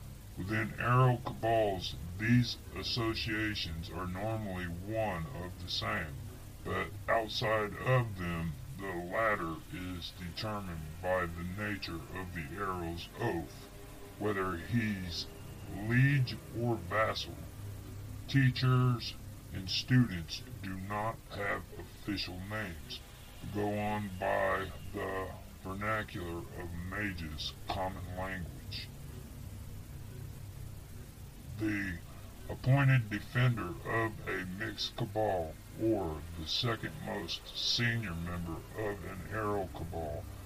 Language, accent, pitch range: English, American, 90-110 Hz